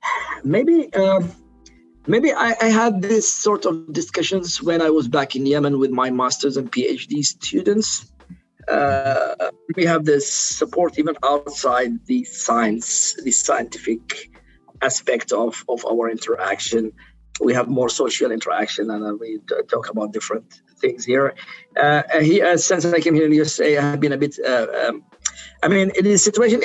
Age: 50-69